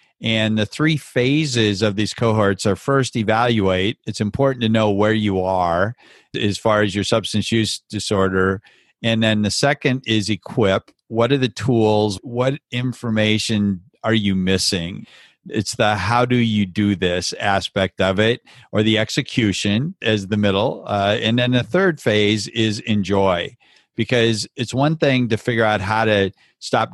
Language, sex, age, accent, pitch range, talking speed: English, male, 50-69, American, 100-125 Hz, 165 wpm